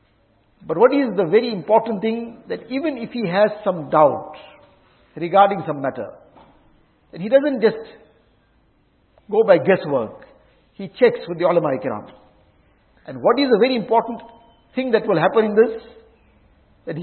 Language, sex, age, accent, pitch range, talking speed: English, male, 50-69, Indian, 175-240 Hz, 150 wpm